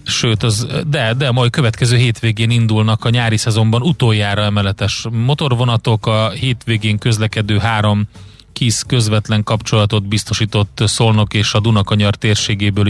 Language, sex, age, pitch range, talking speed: Hungarian, male, 30-49, 105-120 Hz, 125 wpm